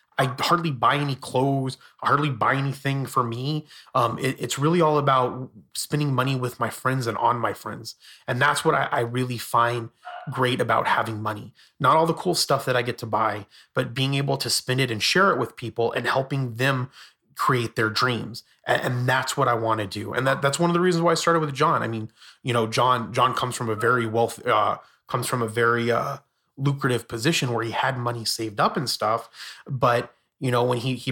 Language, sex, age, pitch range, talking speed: English, male, 30-49, 115-140 Hz, 225 wpm